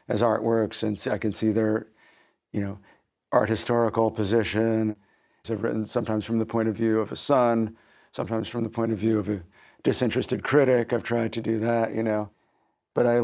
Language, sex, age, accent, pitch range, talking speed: English, male, 50-69, American, 105-115 Hz, 190 wpm